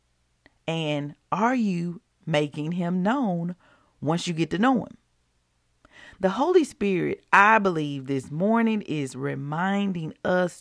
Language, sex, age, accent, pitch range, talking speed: English, female, 40-59, American, 145-205 Hz, 125 wpm